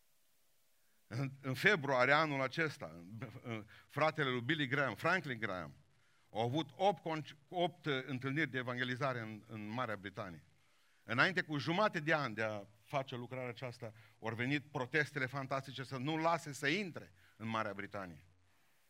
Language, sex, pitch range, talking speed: Romanian, male, 115-155 Hz, 135 wpm